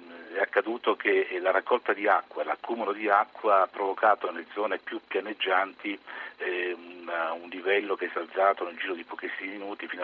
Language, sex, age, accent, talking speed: Italian, male, 50-69, native, 160 wpm